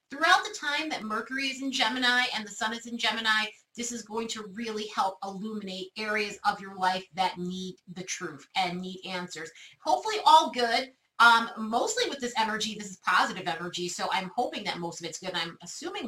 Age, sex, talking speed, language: 30-49, female, 200 wpm, English